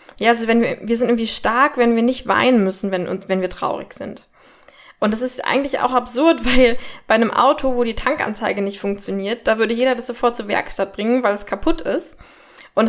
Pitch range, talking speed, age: 205-245 Hz, 220 wpm, 10-29